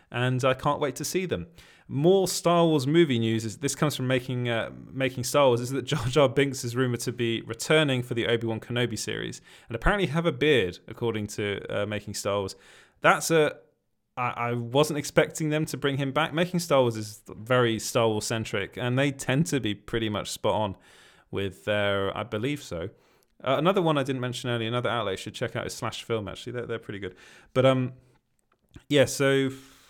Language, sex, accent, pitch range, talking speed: English, male, British, 110-135 Hz, 210 wpm